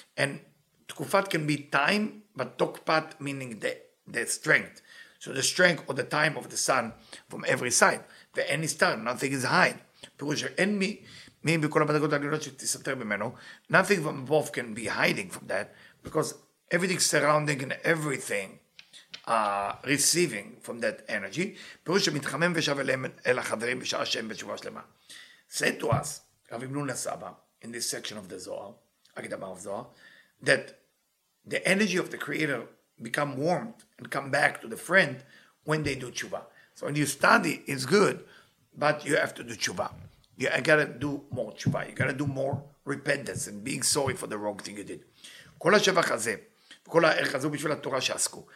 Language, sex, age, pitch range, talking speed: English, male, 50-69, 135-175 Hz, 140 wpm